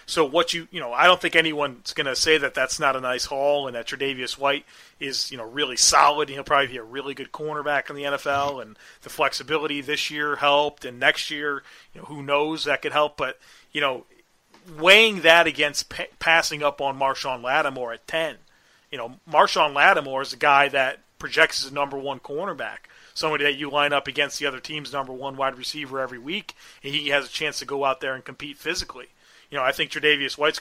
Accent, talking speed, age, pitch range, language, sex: American, 220 wpm, 40-59, 135-155 Hz, English, male